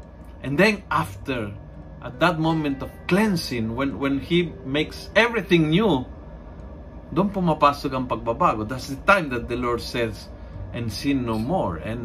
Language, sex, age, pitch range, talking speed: Filipino, male, 50-69, 90-145 Hz, 145 wpm